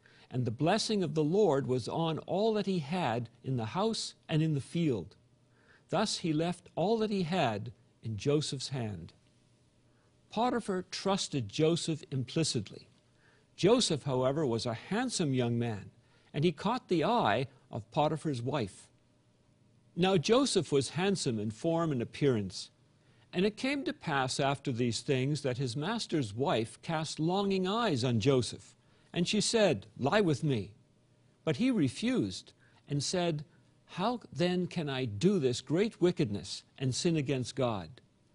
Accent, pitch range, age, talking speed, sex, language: American, 120-175 Hz, 50-69, 150 wpm, male, English